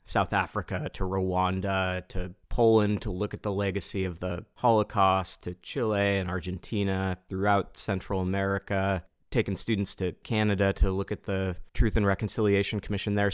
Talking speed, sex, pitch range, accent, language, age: 155 wpm, male, 95-110 Hz, American, English, 30-49